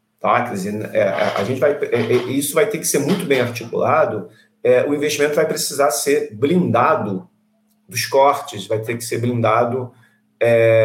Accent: Brazilian